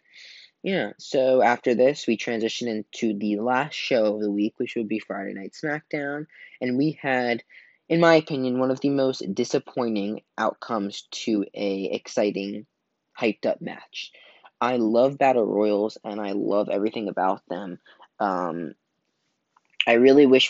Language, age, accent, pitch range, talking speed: English, 20-39, American, 105-145 Hz, 145 wpm